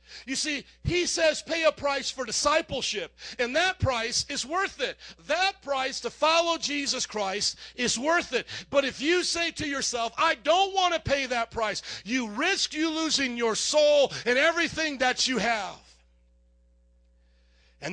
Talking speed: 165 wpm